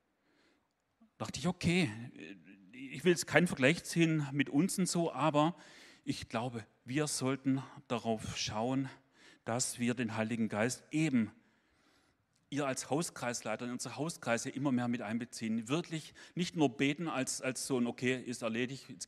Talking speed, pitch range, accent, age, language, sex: 150 wpm, 120-145 Hz, German, 40-59, German, male